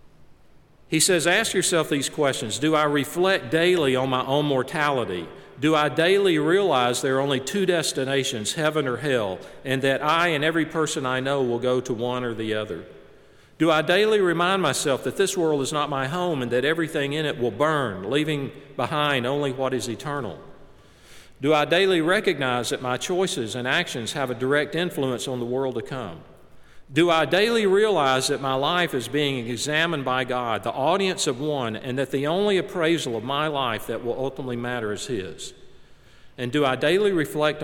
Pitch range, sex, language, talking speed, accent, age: 125-155 Hz, male, English, 190 wpm, American, 50-69